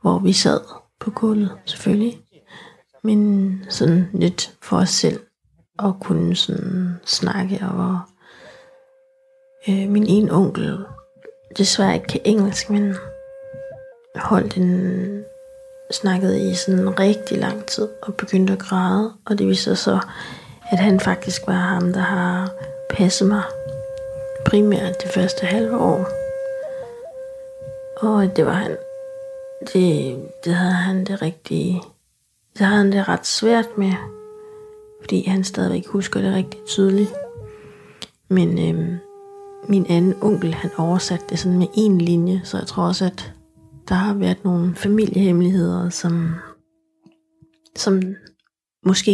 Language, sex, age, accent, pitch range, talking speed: Danish, female, 30-49, native, 180-235 Hz, 130 wpm